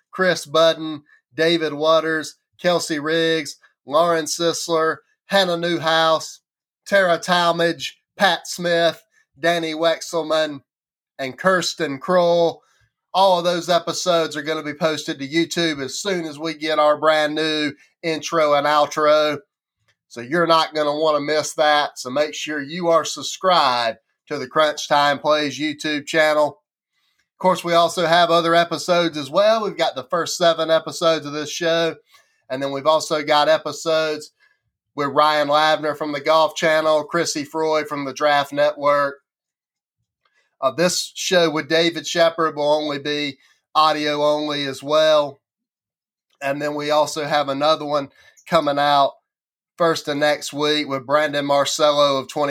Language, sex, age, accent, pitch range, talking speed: English, male, 30-49, American, 145-165 Hz, 145 wpm